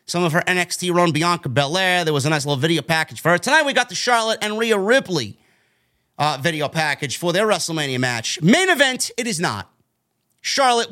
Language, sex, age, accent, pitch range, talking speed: English, male, 30-49, American, 135-220 Hz, 205 wpm